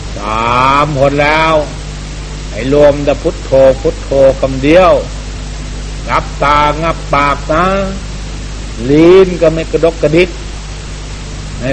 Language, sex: Thai, male